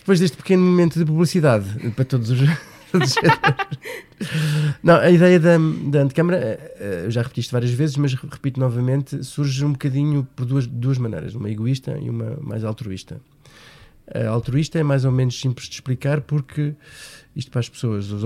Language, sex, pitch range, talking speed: Portuguese, male, 120-140 Hz, 170 wpm